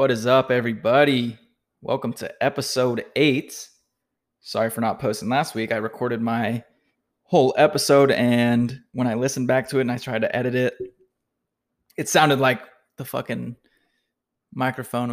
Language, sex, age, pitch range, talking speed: English, male, 20-39, 115-130 Hz, 150 wpm